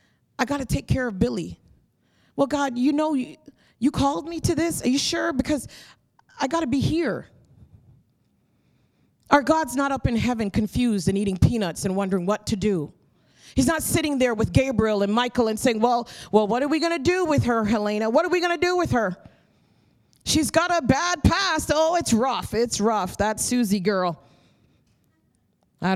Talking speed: 185 wpm